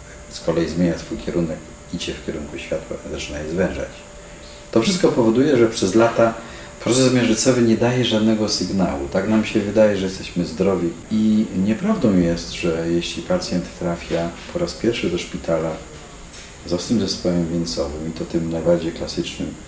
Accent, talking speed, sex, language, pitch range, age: native, 160 wpm, male, Polish, 85-115 Hz, 40-59